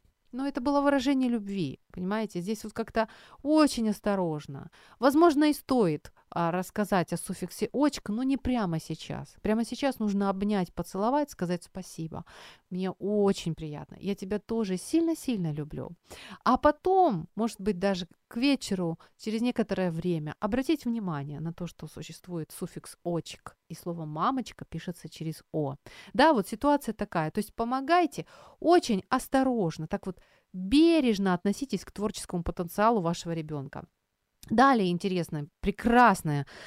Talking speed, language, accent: 135 wpm, Ukrainian, native